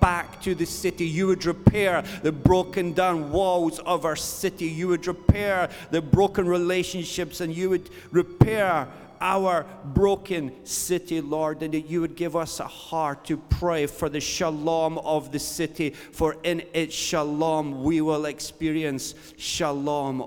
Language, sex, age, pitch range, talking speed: English, male, 40-59, 135-175 Hz, 155 wpm